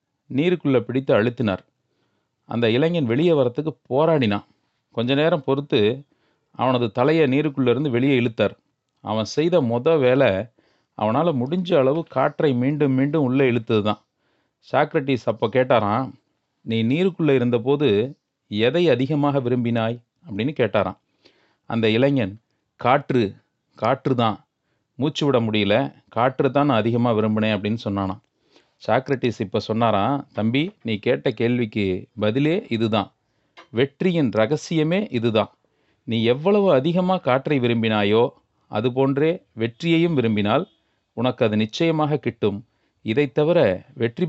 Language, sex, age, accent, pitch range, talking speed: Tamil, male, 30-49, native, 110-145 Hz, 105 wpm